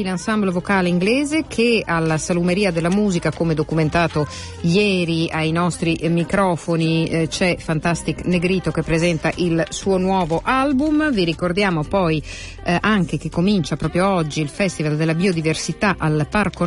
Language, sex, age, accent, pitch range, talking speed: Italian, female, 50-69, native, 155-195 Hz, 140 wpm